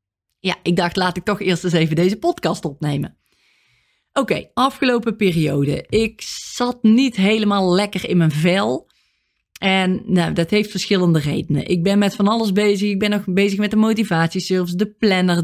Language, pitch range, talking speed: Dutch, 175-210 Hz, 175 wpm